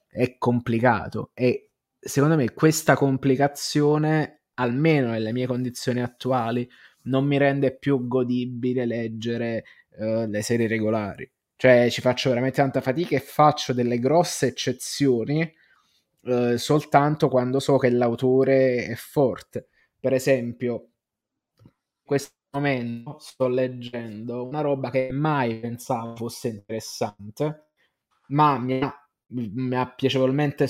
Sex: male